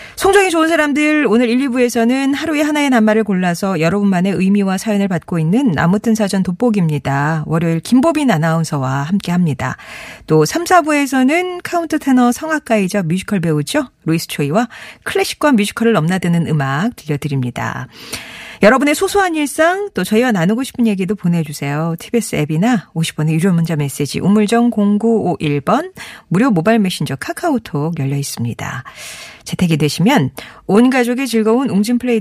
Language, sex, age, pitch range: Korean, female, 40-59, 165-260 Hz